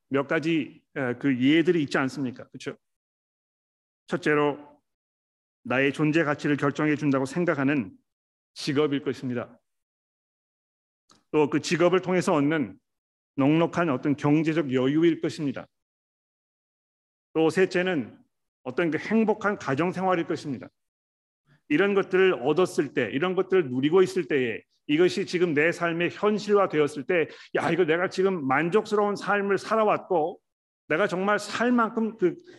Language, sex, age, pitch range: Korean, male, 40-59, 135-185 Hz